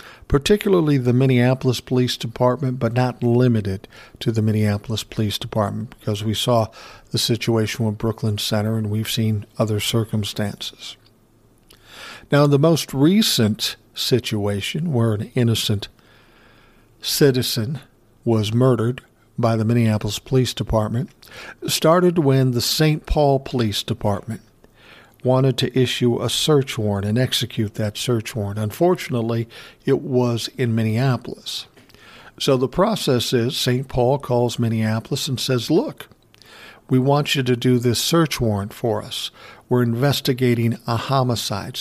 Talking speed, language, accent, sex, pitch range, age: 130 wpm, English, American, male, 110-135 Hz, 60-79